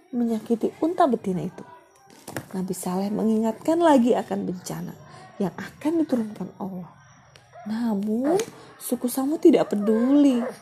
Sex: female